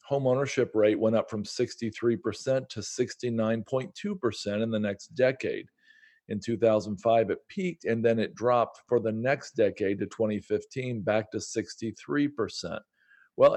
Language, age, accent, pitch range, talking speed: English, 40-59, American, 105-125 Hz, 135 wpm